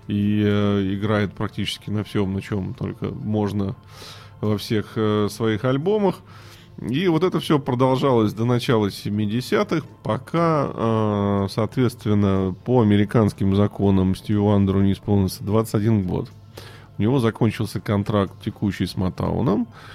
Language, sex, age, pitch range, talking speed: Russian, male, 20-39, 100-125 Hz, 115 wpm